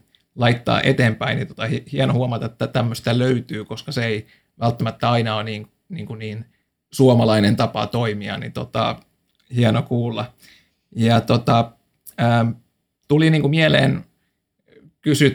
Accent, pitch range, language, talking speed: native, 110-125 Hz, Finnish, 130 wpm